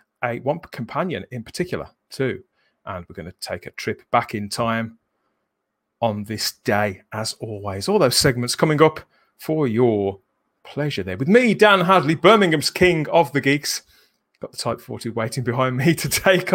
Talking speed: 175 wpm